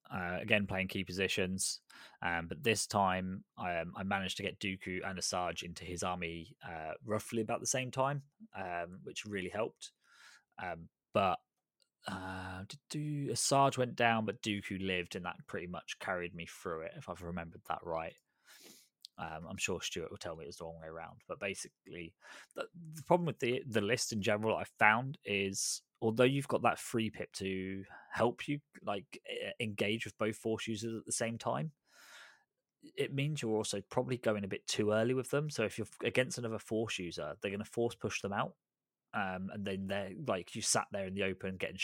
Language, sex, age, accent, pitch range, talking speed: English, male, 20-39, British, 95-120 Hz, 195 wpm